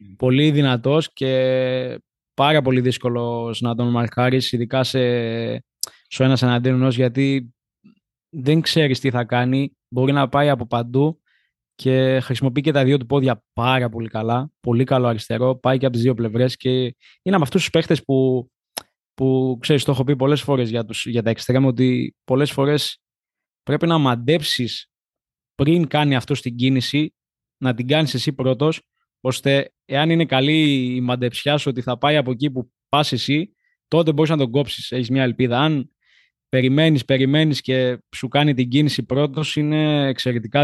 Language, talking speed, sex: Greek, 165 wpm, male